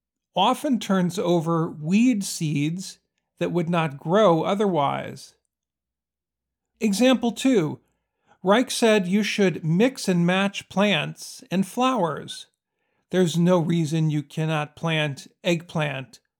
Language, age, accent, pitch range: English, 50-69, American, 160-205 Hz